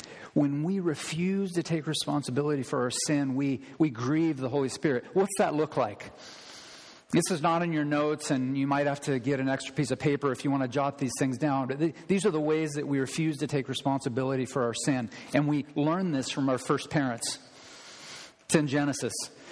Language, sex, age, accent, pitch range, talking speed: English, male, 40-59, American, 135-160 Hz, 210 wpm